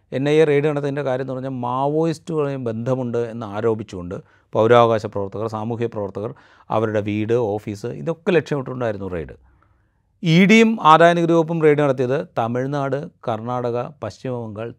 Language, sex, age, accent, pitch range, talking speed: Malayalam, male, 30-49, native, 110-135 Hz, 125 wpm